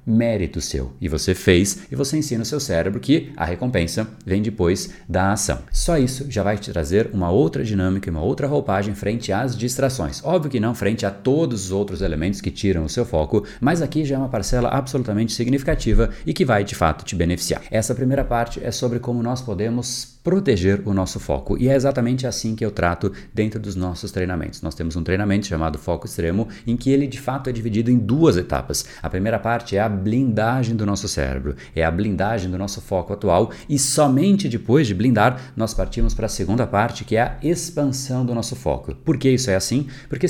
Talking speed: 215 wpm